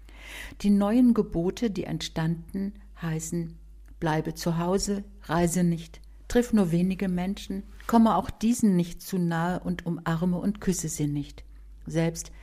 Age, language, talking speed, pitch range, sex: 50-69, German, 135 wpm, 165-200 Hz, female